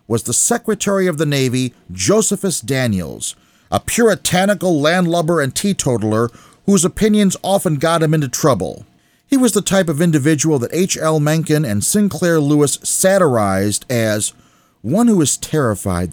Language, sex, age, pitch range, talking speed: English, male, 40-59, 120-180 Hz, 140 wpm